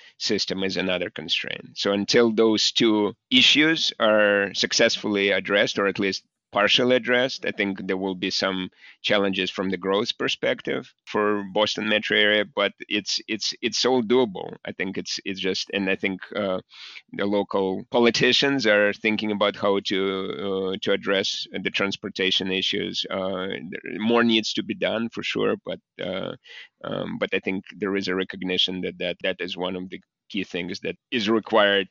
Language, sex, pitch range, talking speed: English, male, 95-115 Hz, 170 wpm